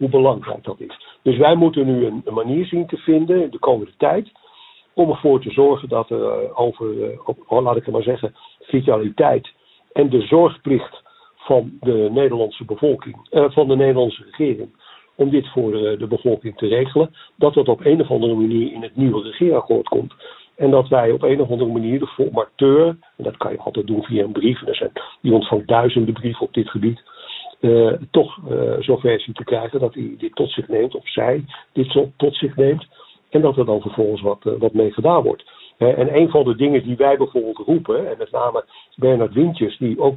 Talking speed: 210 wpm